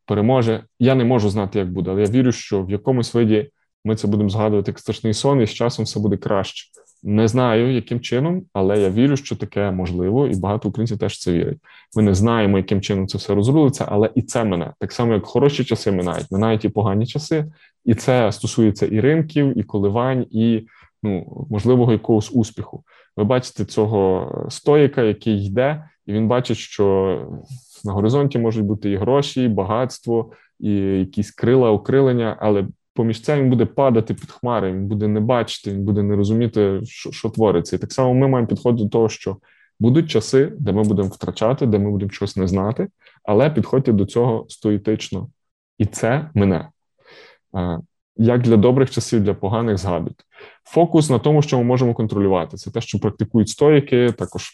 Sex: male